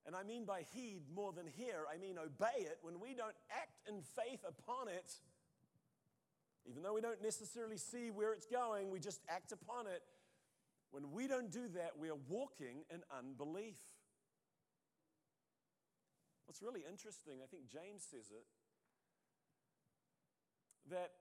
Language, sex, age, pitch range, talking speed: English, male, 40-59, 170-230 Hz, 150 wpm